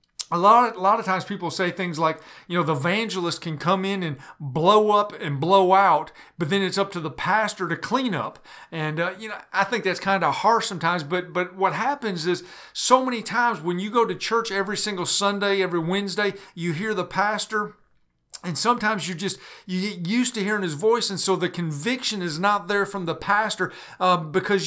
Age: 40-59